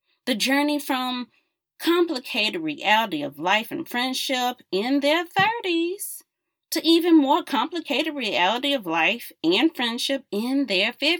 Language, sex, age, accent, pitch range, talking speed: English, female, 40-59, American, 215-325 Hz, 125 wpm